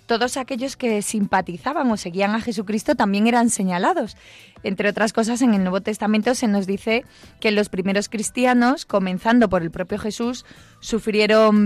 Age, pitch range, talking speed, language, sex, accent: 20-39, 195-240 Hz, 160 wpm, Spanish, female, Spanish